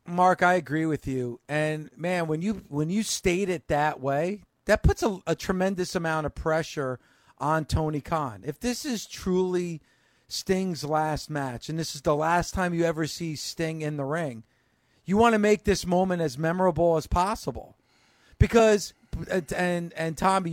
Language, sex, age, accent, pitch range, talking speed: English, male, 50-69, American, 145-185 Hz, 175 wpm